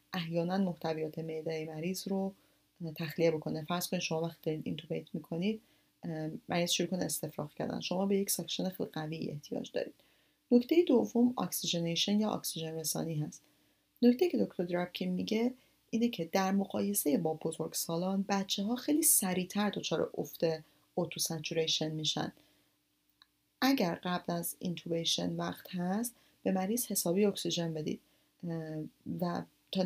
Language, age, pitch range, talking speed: Persian, 30-49, 165-205 Hz, 130 wpm